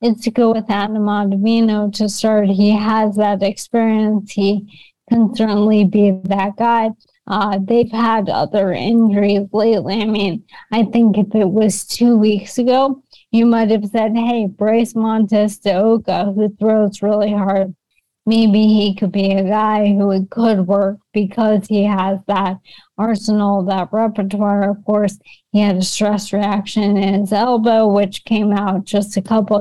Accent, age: American, 20-39